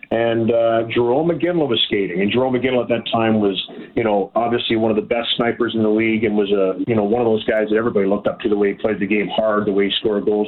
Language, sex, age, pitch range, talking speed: English, male, 40-59, 110-125 Hz, 280 wpm